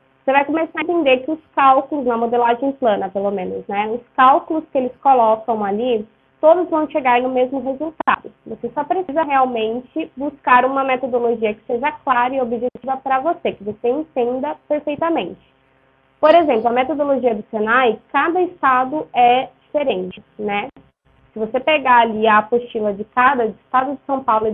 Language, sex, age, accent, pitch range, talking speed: Portuguese, female, 20-39, Brazilian, 220-275 Hz, 165 wpm